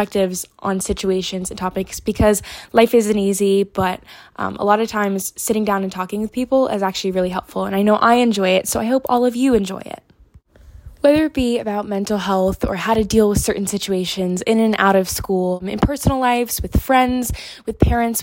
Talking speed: 210 wpm